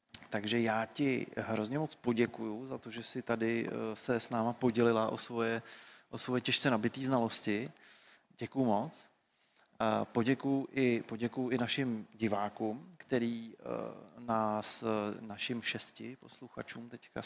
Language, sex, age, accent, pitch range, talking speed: Czech, male, 30-49, native, 110-120 Hz, 120 wpm